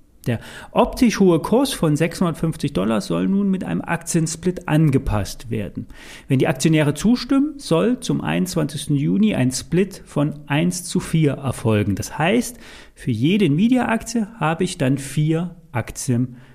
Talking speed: 140 wpm